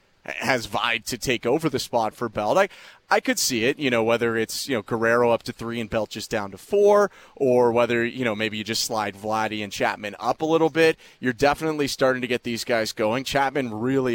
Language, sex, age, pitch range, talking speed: English, male, 30-49, 115-145 Hz, 235 wpm